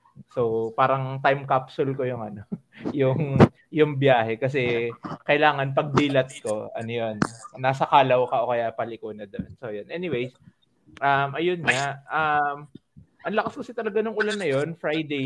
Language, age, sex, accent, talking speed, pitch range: Filipino, 20-39, male, native, 155 wpm, 125-170 Hz